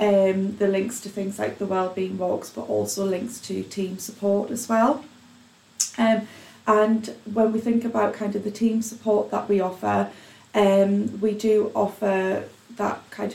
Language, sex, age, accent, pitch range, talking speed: English, female, 30-49, British, 190-215 Hz, 165 wpm